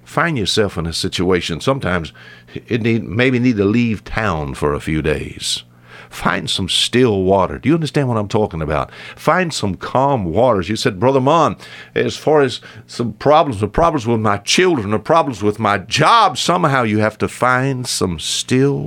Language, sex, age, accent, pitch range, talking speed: English, male, 60-79, American, 80-115 Hz, 180 wpm